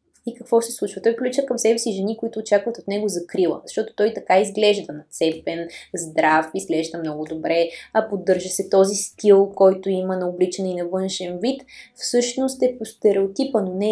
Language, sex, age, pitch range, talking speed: Bulgarian, female, 20-39, 185-235 Hz, 185 wpm